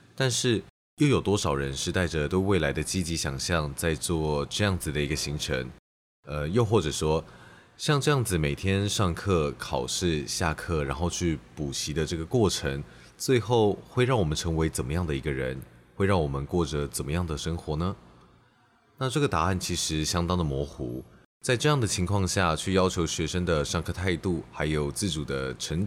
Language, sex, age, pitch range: Chinese, male, 20-39, 75-95 Hz